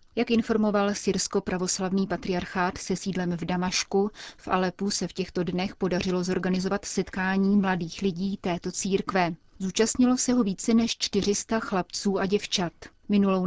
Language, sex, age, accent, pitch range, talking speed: Czech, female, 30-49, native, 180-205 Hz, 145 wpm